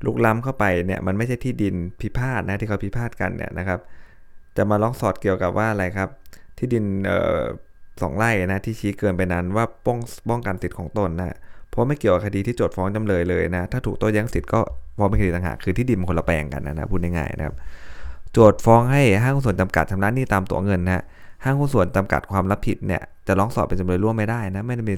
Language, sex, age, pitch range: Thai, male, 20-39, 90-110 Hz